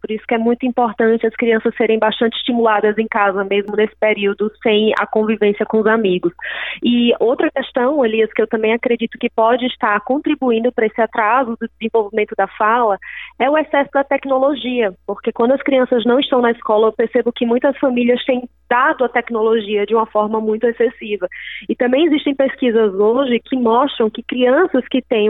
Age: 20-39